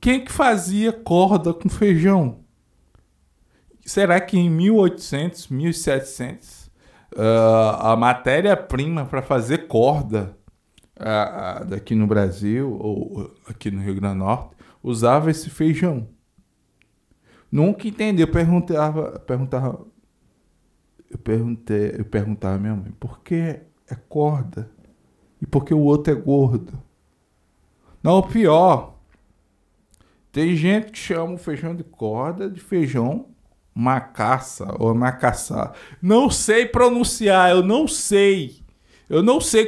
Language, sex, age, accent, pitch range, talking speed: Portuguese, male, 20-39, Brazilian, 115-180 Hz, 120 wpm